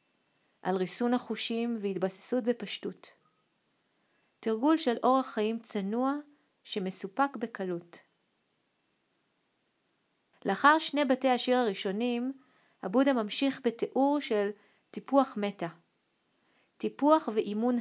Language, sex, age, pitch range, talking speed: Hebrew, female, 40-59, 200-255 Hz, 85 wpm